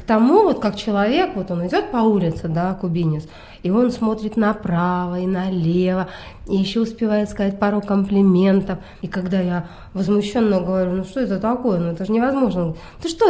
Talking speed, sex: 175 wpm, female